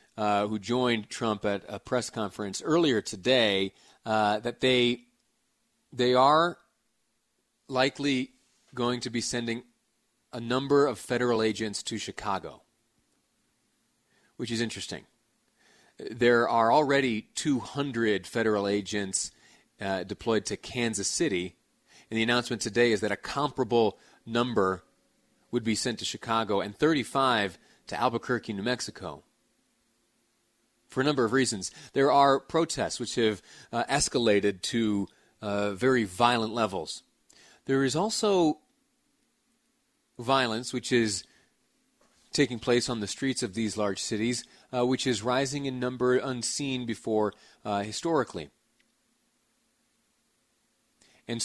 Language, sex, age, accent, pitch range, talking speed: English, male, 30-49, American, 110-130 Hz, 120 wpm